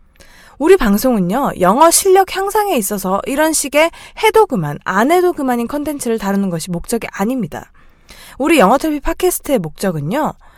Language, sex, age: Korean, female, 20-39